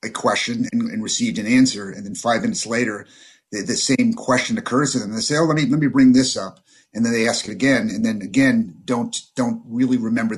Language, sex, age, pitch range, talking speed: English, male, 40-59, 125-195 Hz, 245 wpm